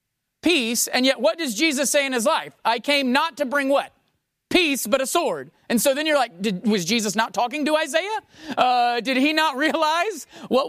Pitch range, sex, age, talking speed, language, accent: 200-310 Hz, male, 40-59, 215 wpm, English, American